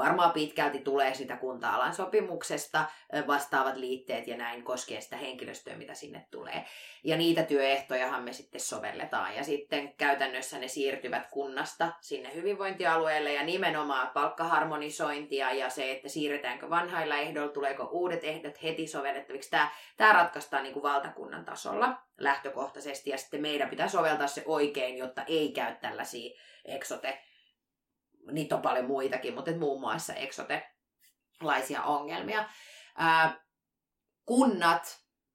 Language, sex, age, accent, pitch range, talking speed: Finnish, female, 20-39, native, 135-165 Hz, 120 wpm